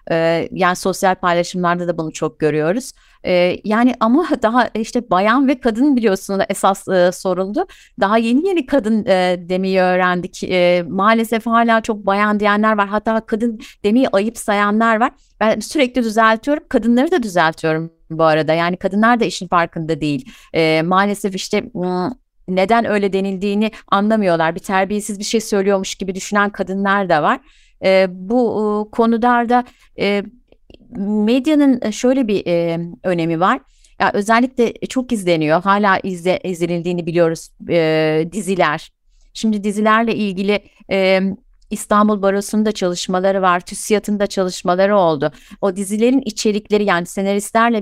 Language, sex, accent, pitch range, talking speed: Turkish, female, native, 180-220 Hz, 120 wpm